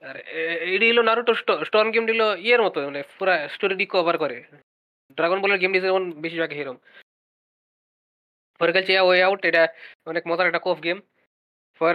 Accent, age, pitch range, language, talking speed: native, 20-39, 170-205 Hz, Bengali, 155 wpm